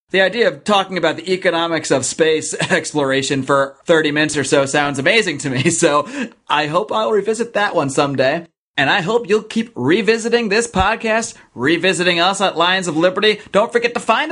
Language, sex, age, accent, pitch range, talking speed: English, male, 30-49, American, 165-225 Hz, 190 wpm